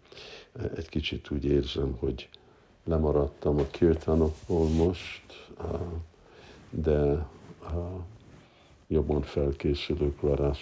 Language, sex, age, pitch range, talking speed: Hungarian, male, 60-79, 70-85 Hz, 75 wpm